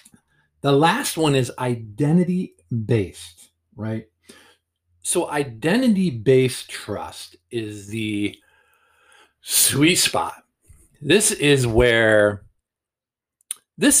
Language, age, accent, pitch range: English, 50-69, American, 115-150 Hz